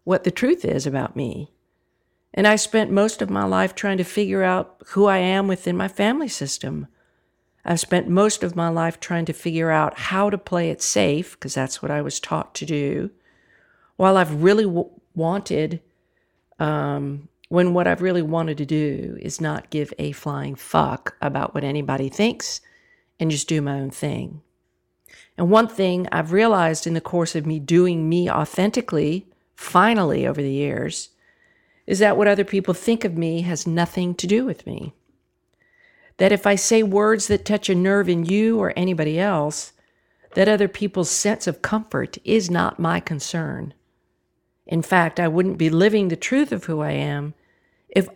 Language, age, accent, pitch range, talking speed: English, 50-69, American, 155-205 Hz, 180 wpm